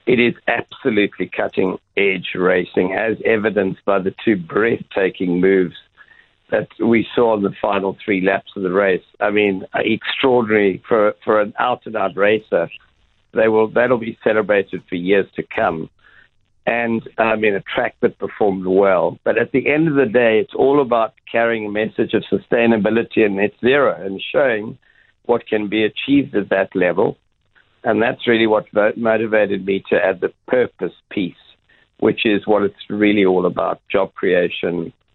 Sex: male